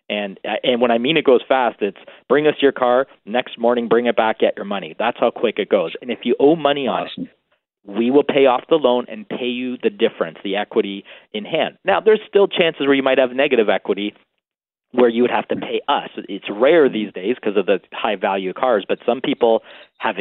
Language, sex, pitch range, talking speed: English, male, 110-130 Hz, 230 wpm